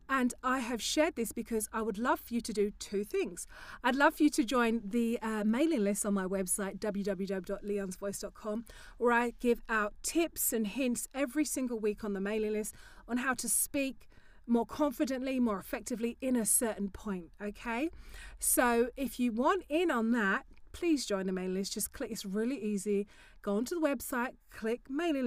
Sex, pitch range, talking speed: female, 210-280 Hz, 190 wpm